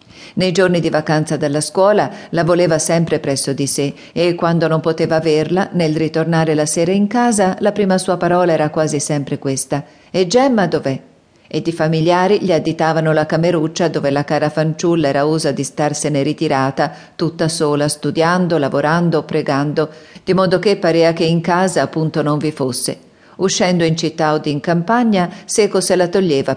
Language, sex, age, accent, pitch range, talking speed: Italian, female, 50-69, native, 150-185 Hz, 170 wpm